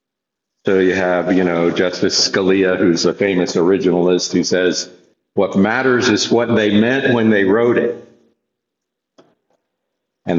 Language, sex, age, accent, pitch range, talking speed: English, male, 50-69, American, 90-110 Hz, 140 wpm